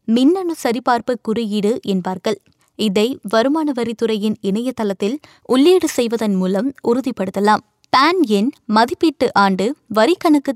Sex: female